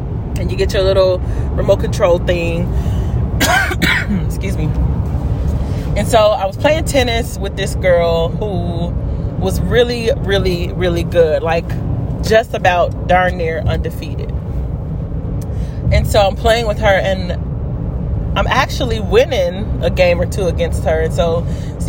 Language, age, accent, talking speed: English, 20-39, American, 135 wpm